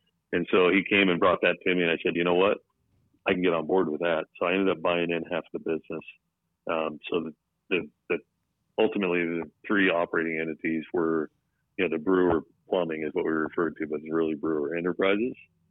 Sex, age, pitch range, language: male, 40-59, 80-90 Hz, English